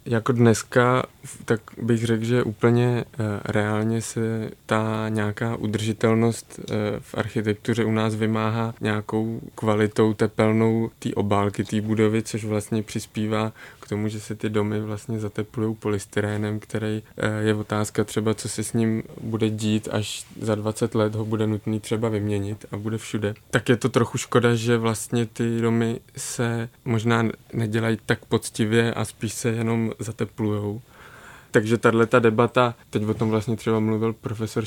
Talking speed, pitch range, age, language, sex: 155 wpm, 105-115 Hz, 20-39, Czech, male